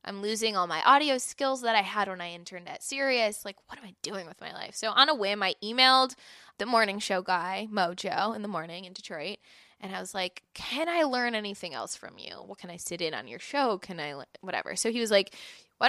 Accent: American